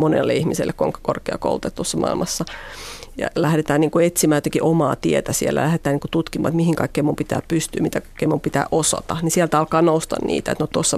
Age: 40-59